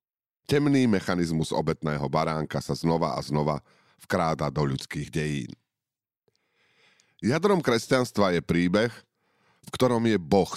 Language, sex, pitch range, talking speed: Slovak, male, 80-115 Hz, 115 wpm